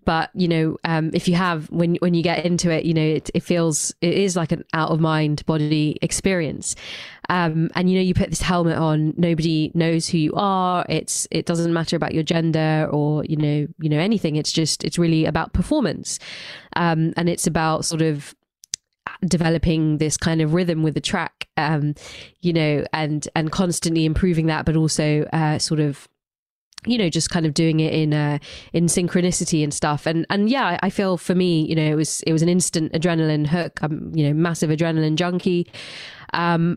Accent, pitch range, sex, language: British, 155-175 Hz, female, English